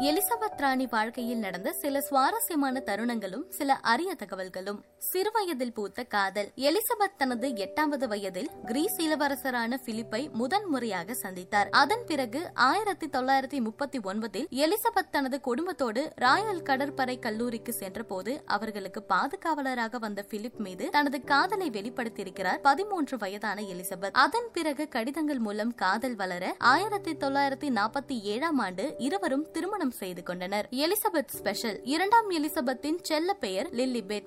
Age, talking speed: 20-39, 105 wpm